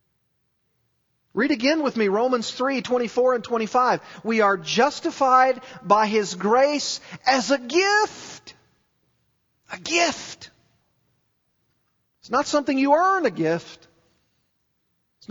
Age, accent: 40-59, American